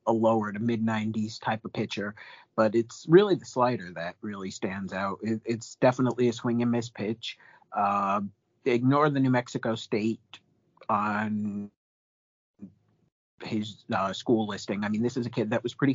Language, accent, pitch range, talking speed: English, American, 110-125 Hz, 165 wpm